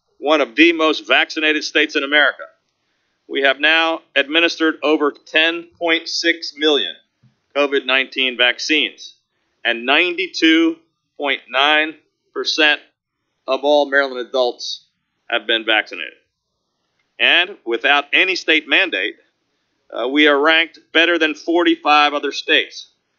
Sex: male